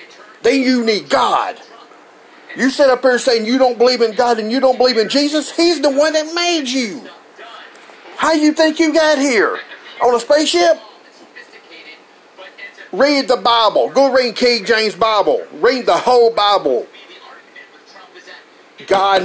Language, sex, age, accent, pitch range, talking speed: English, male, 50-69, American, 225-305 Hz, 155 wpm